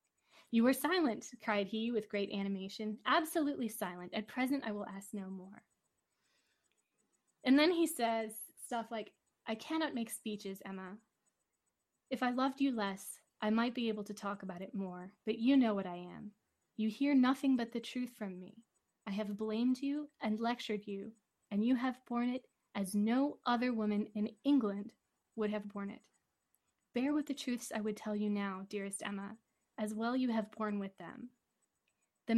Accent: American